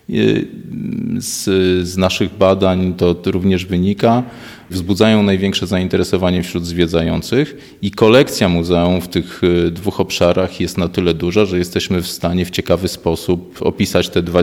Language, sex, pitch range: Polish, male, 90-100 Hz